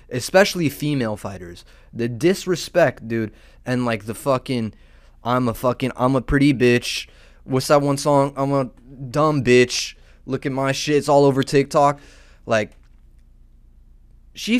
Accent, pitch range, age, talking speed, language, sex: American, 105-135 Hz, 20-39, 145 wpm, English, male